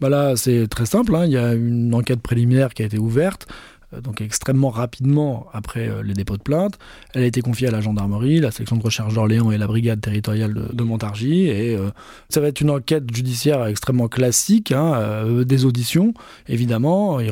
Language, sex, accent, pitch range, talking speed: French, male, French, 110-135 Hz, 210 wpm